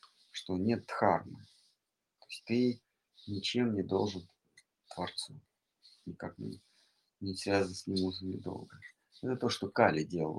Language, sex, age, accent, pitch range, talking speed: Russian, male, 50-69, native, 90-110 Hz, 135 wpm